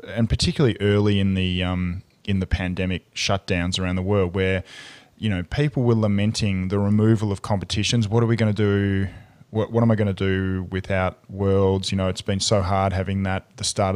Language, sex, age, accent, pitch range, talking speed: English, male, 20-39, Australian, 95-110 Hz, 205 wpm